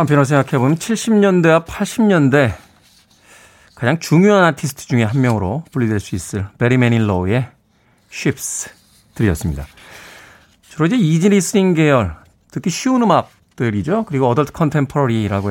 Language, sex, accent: Korean, male, native